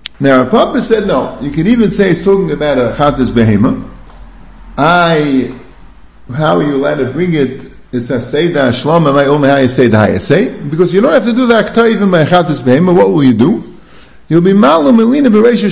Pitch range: 130-205 Hz